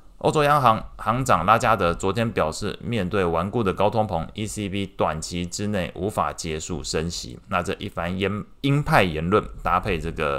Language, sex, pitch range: Chinese, male, 80-110 Hz